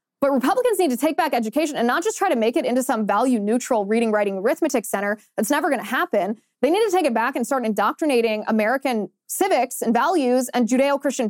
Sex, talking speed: female, 220 wpm